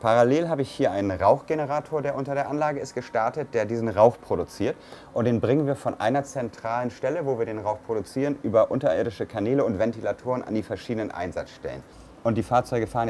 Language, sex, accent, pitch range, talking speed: German, male, German, 100-125 Hz, 195 wpm